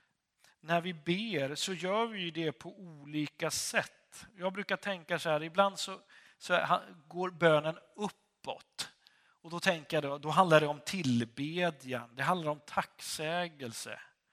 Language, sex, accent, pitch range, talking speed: Swedish, male, native, 150-190 Hz, 140 wpm